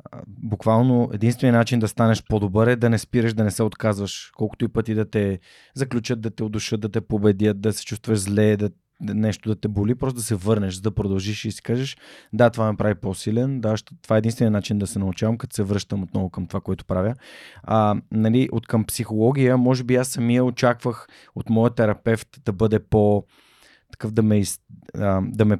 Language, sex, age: Bulgarian, male, 20-39